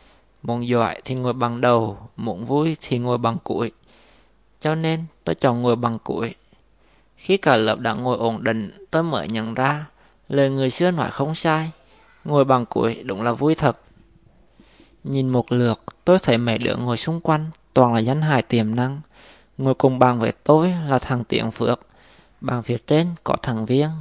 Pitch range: 115-145 Hz